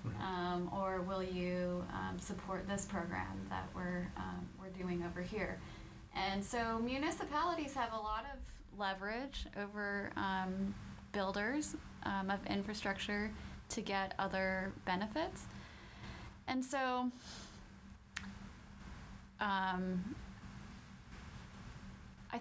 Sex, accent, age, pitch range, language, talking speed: female, American, 20-39, 185-225 Hz, English, 100 wpm